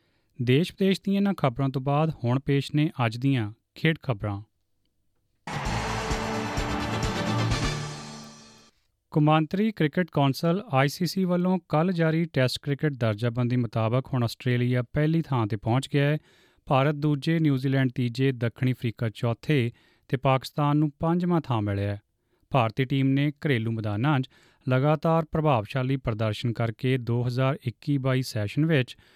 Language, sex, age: English, male, 30-49